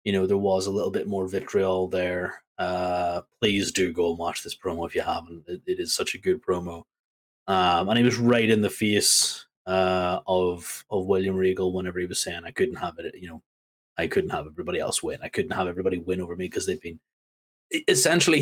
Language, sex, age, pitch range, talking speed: English, male, 30-49, 90-110 Hz, 220 wpm